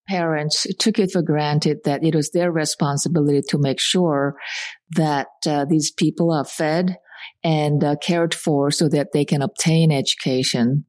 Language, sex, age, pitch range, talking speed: English, female, 50-69, 145-175 Hz, 160 wpm